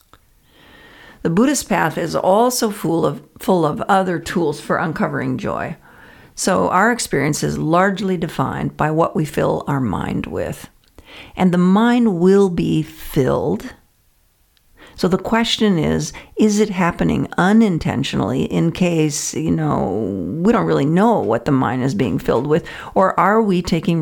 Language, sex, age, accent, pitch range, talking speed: English, female, 50-69, American, 160-205 Hz, 145 wpm